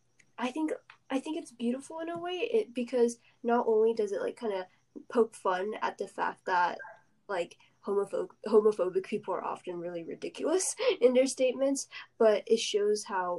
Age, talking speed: 10-29, 175 wpm